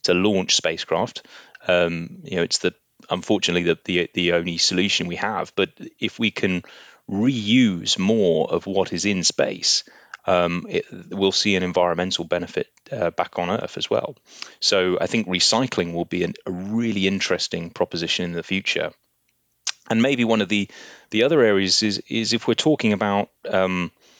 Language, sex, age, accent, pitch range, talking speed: English, male, 30-49, British, 90-110 Hz, 170 wpm